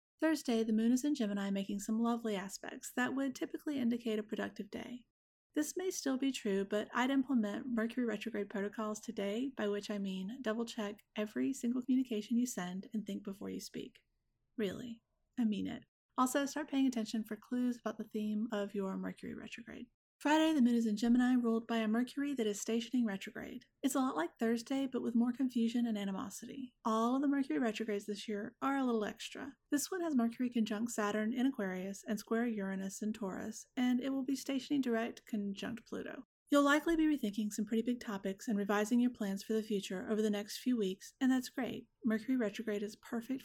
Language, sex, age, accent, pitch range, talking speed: English, female, 30-49, American, 215-250 Hz, 200 wpm